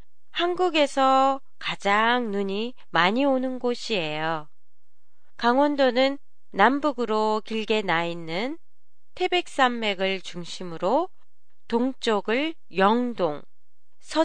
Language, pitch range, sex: Japanese, 195-275 Hz, female